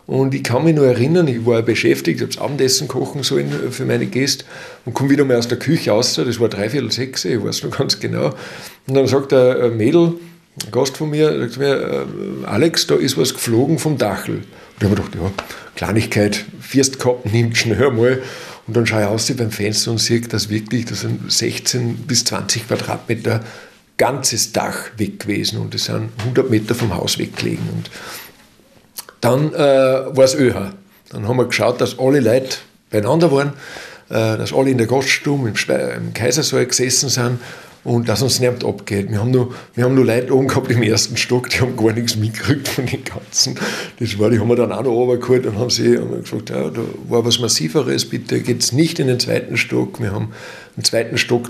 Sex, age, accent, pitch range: male, 50-69, German, 110-130 Hz